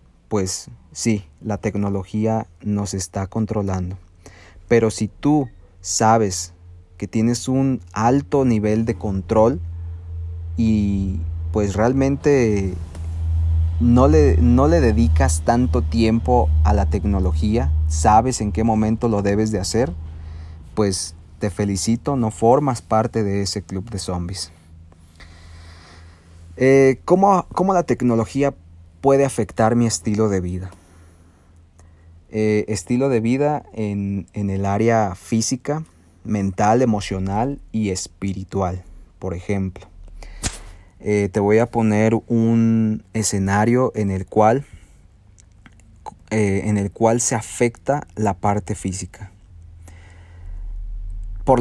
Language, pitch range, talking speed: Spanish, 85-115 Hz, 110 wpm